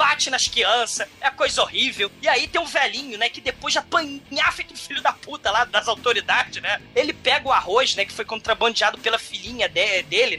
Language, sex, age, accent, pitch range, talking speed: Portuguese, male, 20-39, Brazilian, 230-295 Hz, 200 wpm